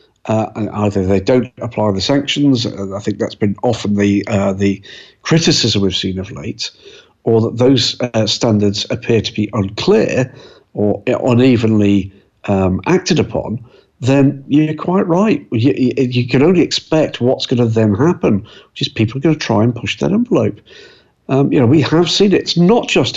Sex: male